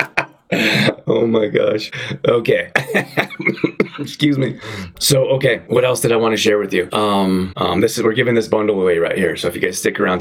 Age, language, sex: 20-39, English, male